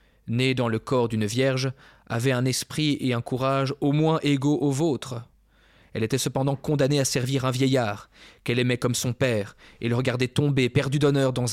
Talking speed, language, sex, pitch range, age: 195 wpm, French, male, 110-130 Hz, 20-39